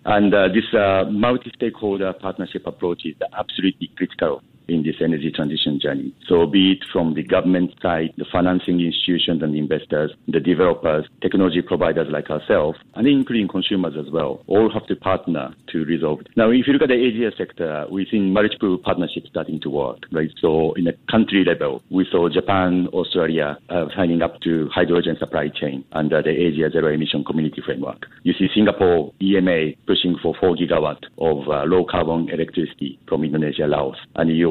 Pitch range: 80-95 Hz